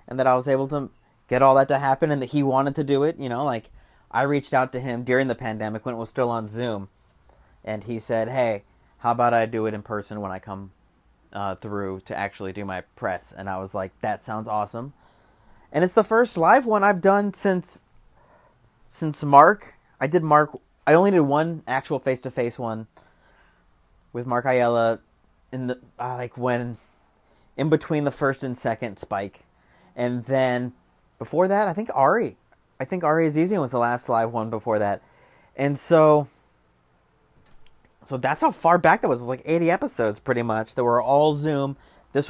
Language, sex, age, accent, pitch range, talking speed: English, male, 30-49, American, 115-160 Hz, 195 wpm